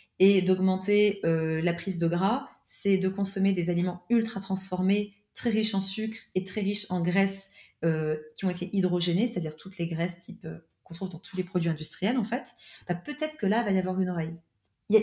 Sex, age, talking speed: female, 30-49, 215 wpm